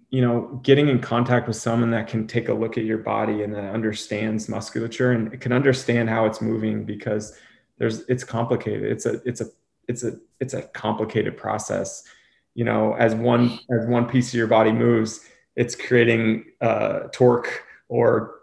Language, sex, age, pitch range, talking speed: English, male, 20-39, 110-125 Hz, 180 wpm